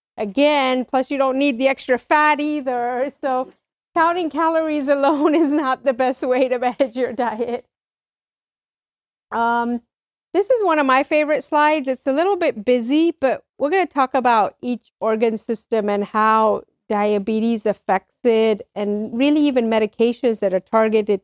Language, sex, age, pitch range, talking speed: English, female, 40-59, 215-260 Hz, 160 wpm